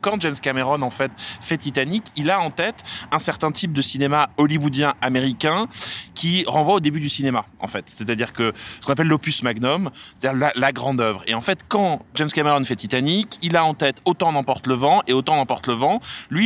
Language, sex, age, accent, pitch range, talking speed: French, male, 20-39, French, 120-160 Hz, 220 wpm